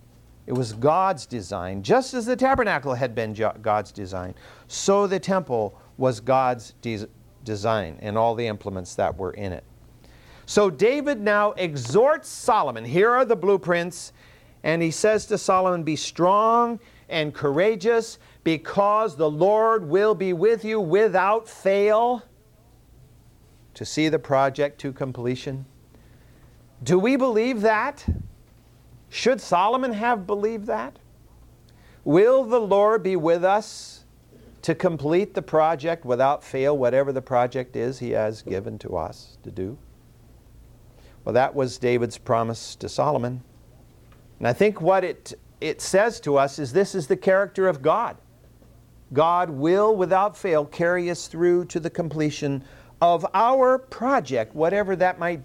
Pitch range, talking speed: 120-200 Hz, 140 wpm